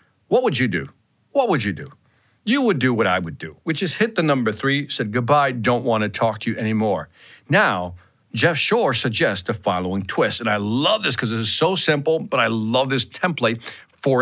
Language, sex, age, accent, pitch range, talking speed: English, male, 50-69, American, 115-170 Hz, 215 wpm